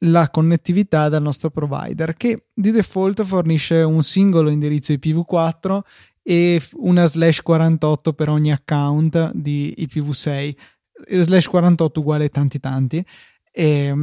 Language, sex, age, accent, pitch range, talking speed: Italian, male, 20-39, native, 145-170 Hz, 120 wpm